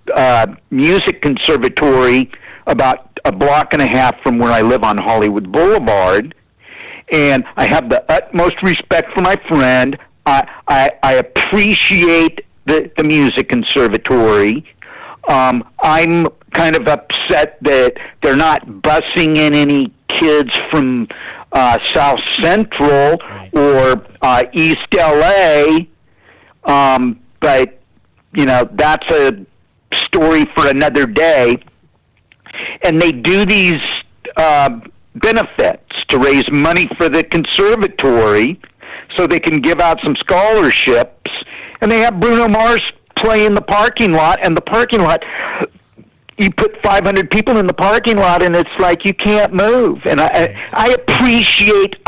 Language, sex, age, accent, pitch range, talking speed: English, male, 50-69, American, 140-200 Hz, 130 wpm